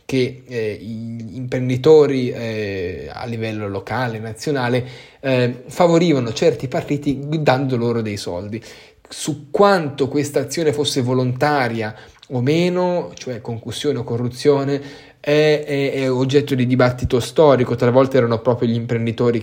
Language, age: Italian, 10-29